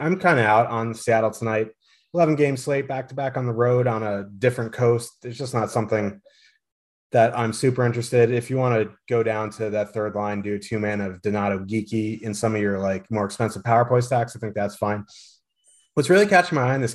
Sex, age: male, 30-49